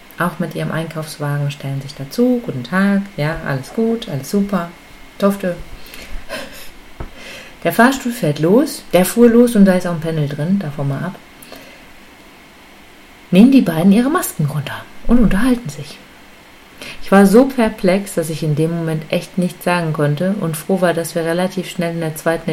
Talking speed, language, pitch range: 170 wpm, German, 160-215 Hz